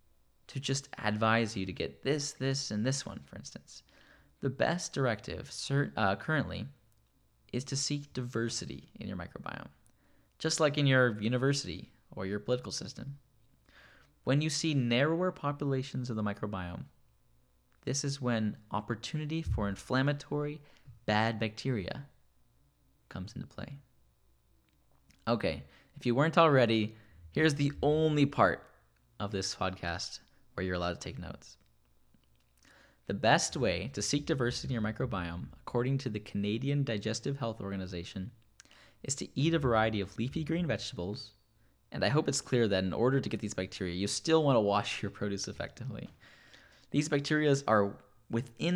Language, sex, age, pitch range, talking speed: English, male, 10-29, 100-140 Hz, 145 wpm